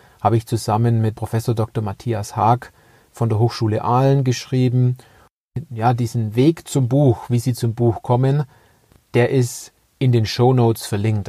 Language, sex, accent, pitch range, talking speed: German, male, German, 110-130 Hz, 155 wpm